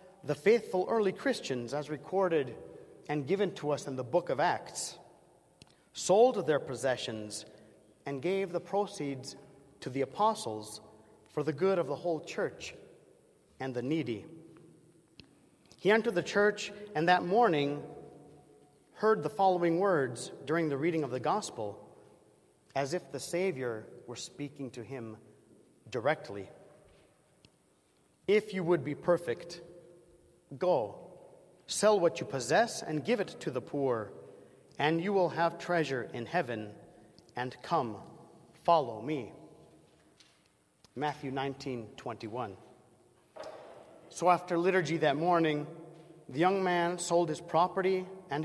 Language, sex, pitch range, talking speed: English, male, 135-180 Hz, 130 wpm